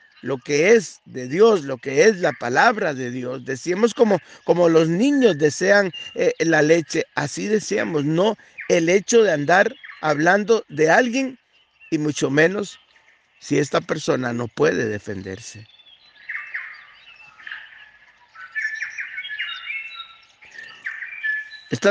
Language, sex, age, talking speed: Spanish, male, 50-69, 110 wpm